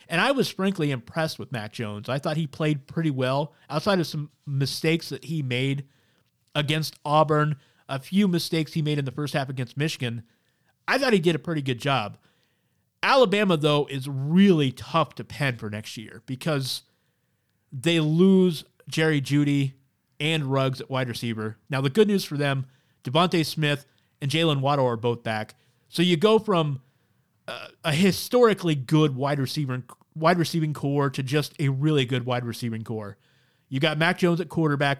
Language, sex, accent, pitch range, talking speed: English, male, American, 130-160 Hz, 180 wpm